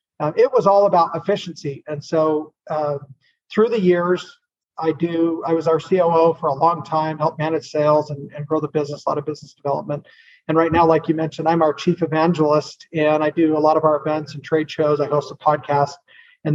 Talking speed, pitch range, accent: 225 wpm, 150-175 Hz, American